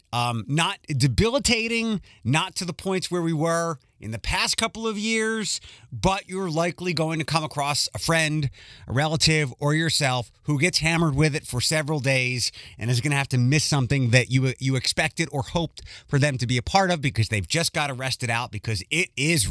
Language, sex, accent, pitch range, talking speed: English, male, American, 120-170 Hz, 205 wpm